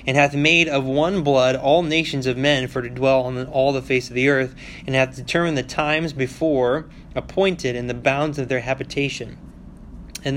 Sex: male